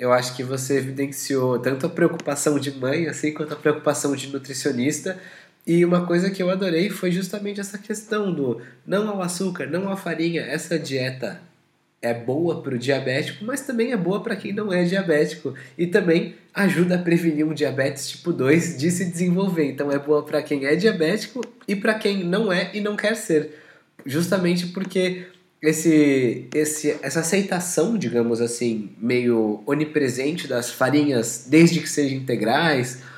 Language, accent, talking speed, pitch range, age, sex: Portuguese, Brazilian, 170 wpm, 140-180 Hz, 20-39, male